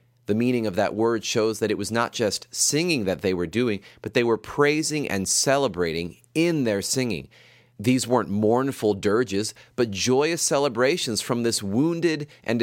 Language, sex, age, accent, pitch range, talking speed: English, male, 30-49, American, 100-130 Hz, 170 wpm